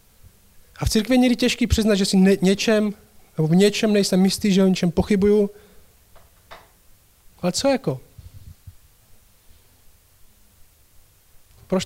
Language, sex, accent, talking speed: Czech, male, native, 110 wpm